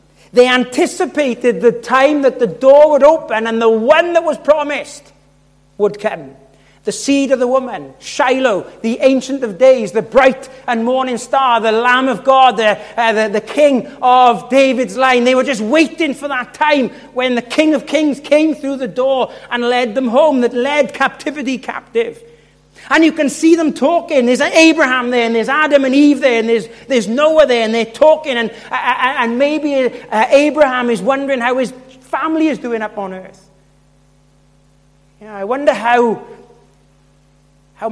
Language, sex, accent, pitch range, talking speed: English, male, British, 205-275 Hz, 175 wpm